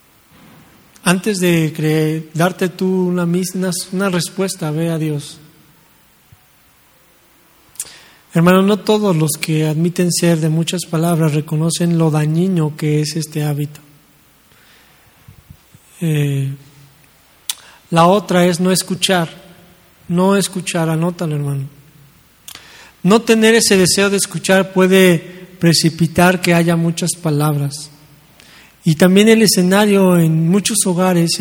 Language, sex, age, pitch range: English, male, 40-59, 160-185 Hz